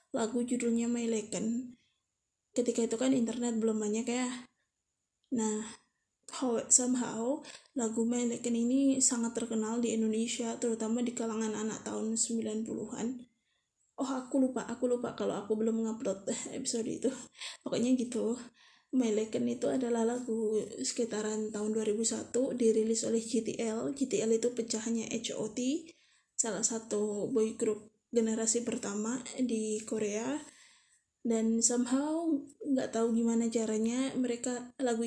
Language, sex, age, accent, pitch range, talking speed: Indonesian, female, 20-39, native, 225-255 Hz, 120 wpm